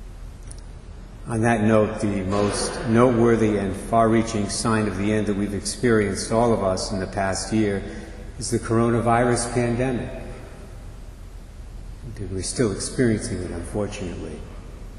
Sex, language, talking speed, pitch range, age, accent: male, English, 125 wpm, 95-115 Hz, 50-69, American